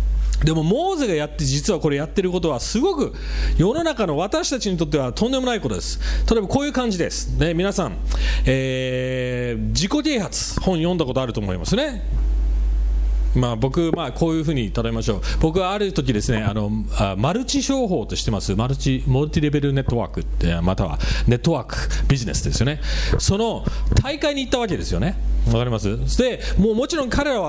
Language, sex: English, male